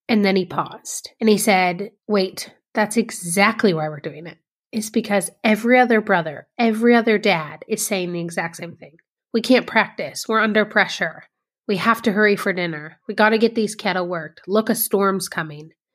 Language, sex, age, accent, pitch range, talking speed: English, female, 30-49, American, 195-245 Hz, 190 wpm